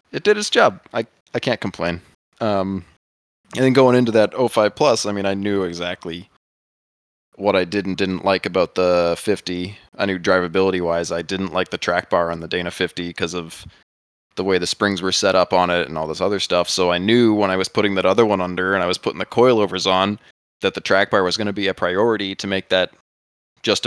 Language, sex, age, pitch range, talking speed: English, male, 20-39, 85-105 Hz, 235 wpm